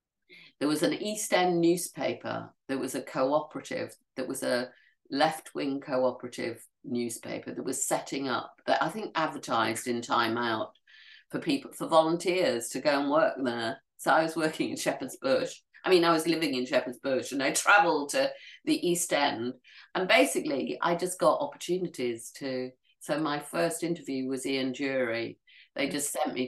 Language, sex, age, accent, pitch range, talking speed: English, female, 50-69, British, 130-200 Hz, 170 wpm